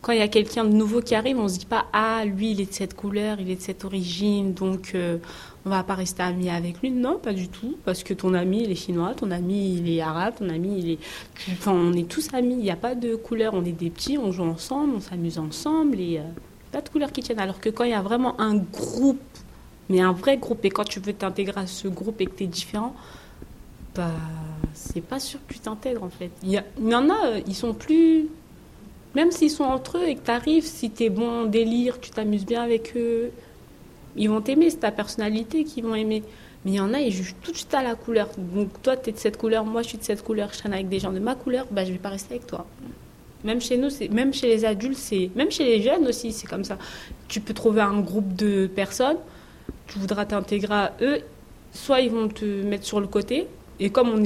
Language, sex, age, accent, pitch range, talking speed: French, female, 30-49, French, 195-245 Hz, 270 wpm